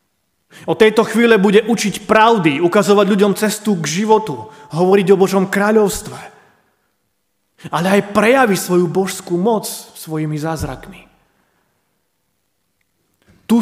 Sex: male